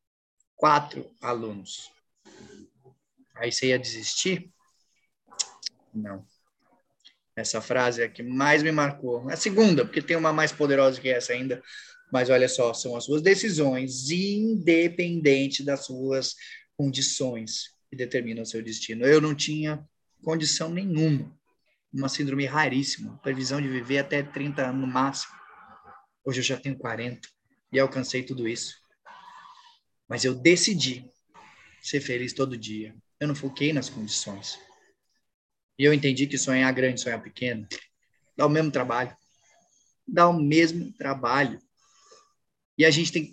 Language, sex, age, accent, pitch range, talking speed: Portuguese, male, 20-39, Brazilian, 125-155 Hz, 135 wpm